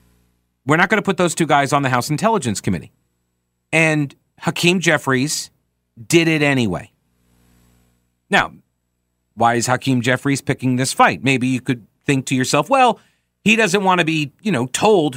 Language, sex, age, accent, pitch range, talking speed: English, male, 40-59, American, 110-160 Hz, 165 wpm